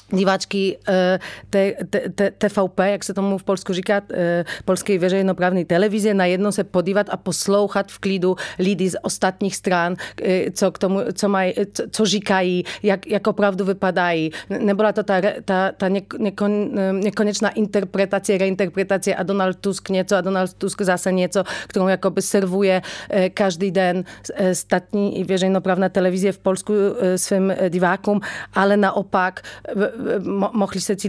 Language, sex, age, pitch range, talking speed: Czech, female, 30-49, 185-205 Hz, 130 wpm